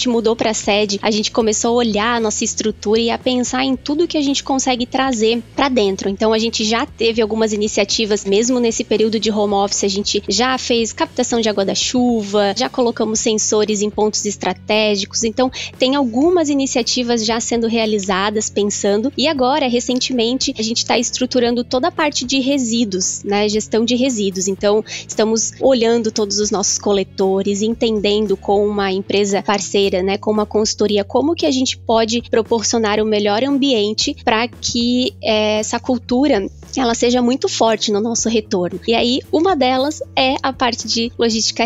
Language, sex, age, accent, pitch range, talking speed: Portuguese, female, 20-39, Brazilian, 210-245 Hz, 175 wpm